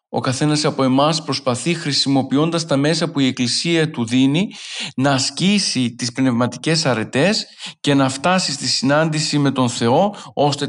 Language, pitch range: Greek, 135-170 Hz